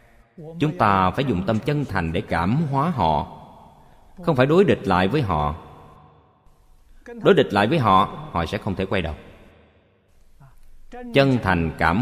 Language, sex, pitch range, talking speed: Vietnamese, male, 85-125 Hz, 160 wpm